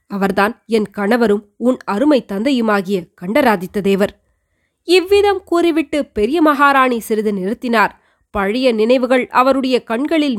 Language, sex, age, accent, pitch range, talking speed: Tamil, female, 20-39, native, 200-250 Hz, 105 wpm